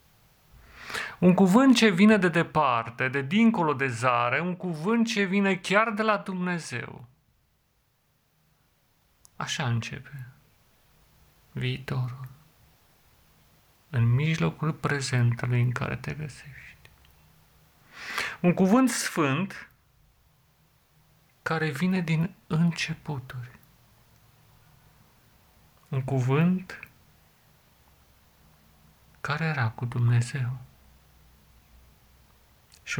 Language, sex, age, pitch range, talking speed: Romanian, male, 40-59, 120-160 Hz, 75 wpm